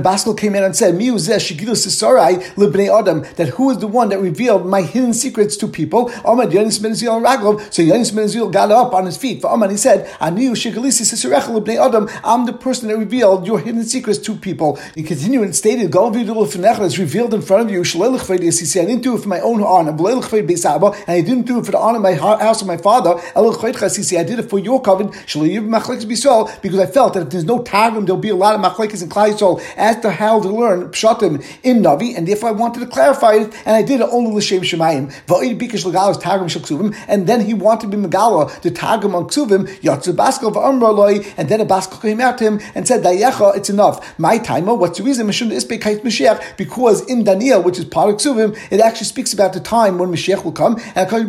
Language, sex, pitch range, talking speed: English, male, 190-230 Hz, 210 wpm